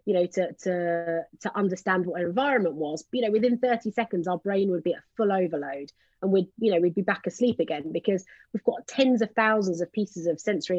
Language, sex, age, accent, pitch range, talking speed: English, female, 30-49, British, 165-205 Hz, 230 wpm